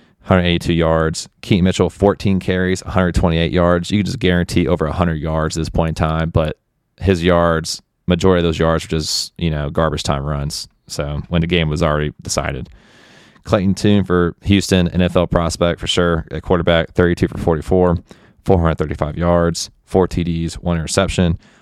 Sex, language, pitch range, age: male, English, 80-90 Hz, 20-39